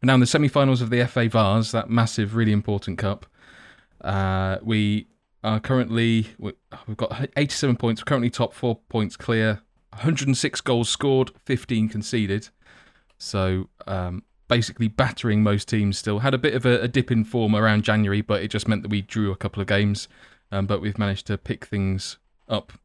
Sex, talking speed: male, 180 wpm